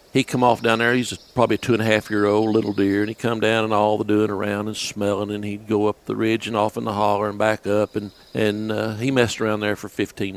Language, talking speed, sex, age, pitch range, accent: English, 260 wpm, male, 60-79, 95-110 Hz, American